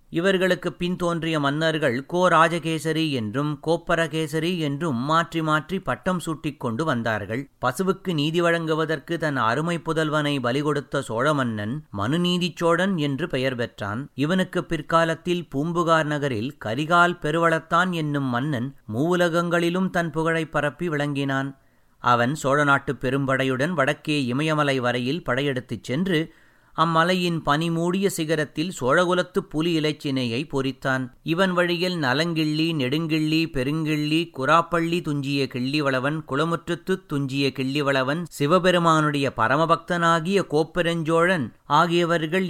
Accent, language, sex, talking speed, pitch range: native, Tamil, male, 100 wpm, 135-170 Hz